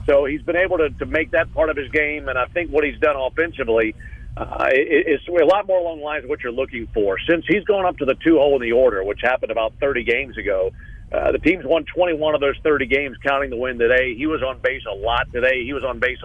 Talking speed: 270 wpm